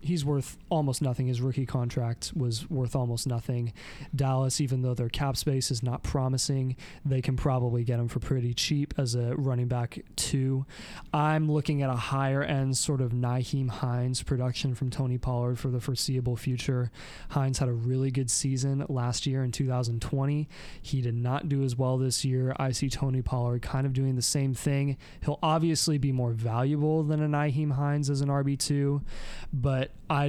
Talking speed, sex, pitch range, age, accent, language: 185 wpm, male, 125-145 Hz, 20-39, American, English